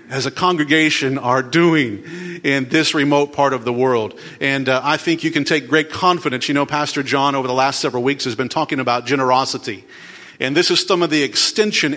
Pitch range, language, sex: 130-165 Hz, English, male